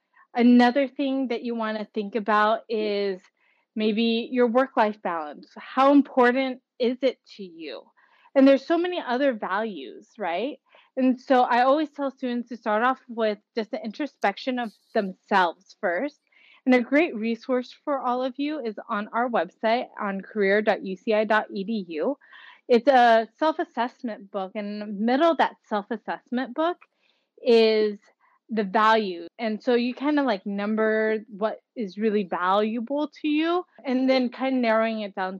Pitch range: 205-255 Hz